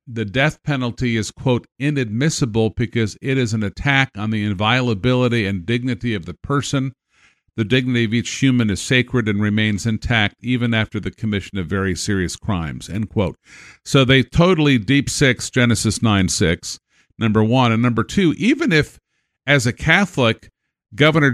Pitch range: 110-135 Hz